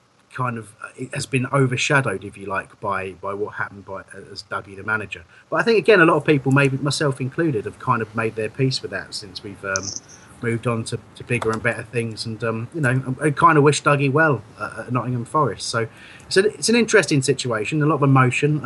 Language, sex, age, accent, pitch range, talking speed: English, male, 30-49, British, 110-135 Hz, 230 wpm